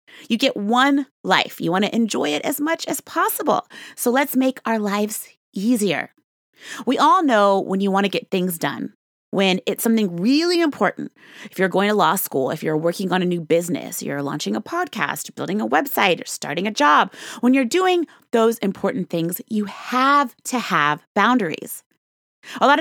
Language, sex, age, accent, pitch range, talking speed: English, female, 30-49, American, 180-255 Hz, 190 wpm